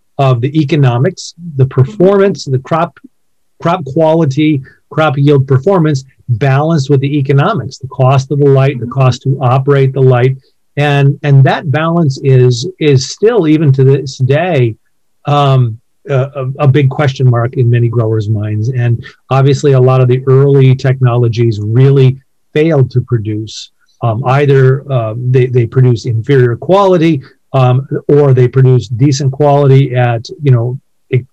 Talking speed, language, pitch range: 150 wpm, English, 125-150 Hz